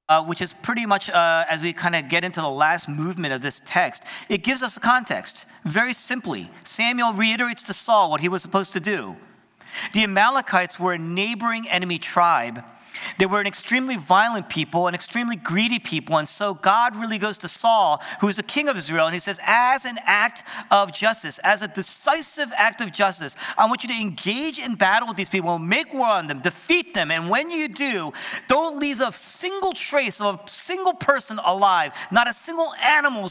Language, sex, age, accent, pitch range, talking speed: English, male, 40-59, American, 170-240 Hz, 200 wpm